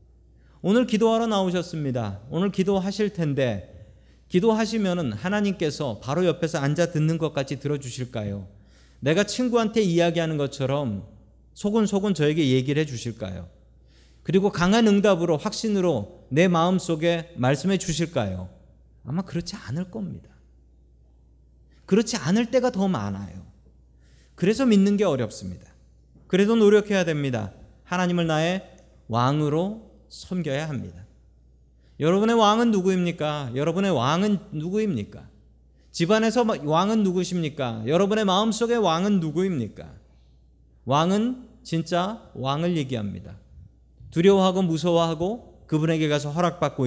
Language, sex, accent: Korean, male, native